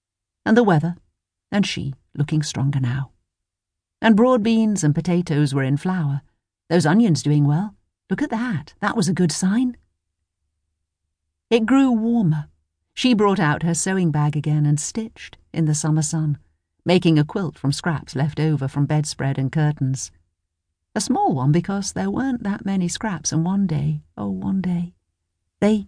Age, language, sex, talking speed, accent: 50-69, English, female, 165 wpm, British